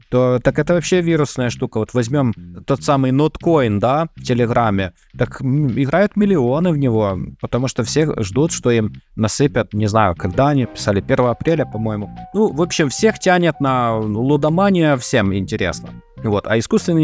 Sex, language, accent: male, Russian, native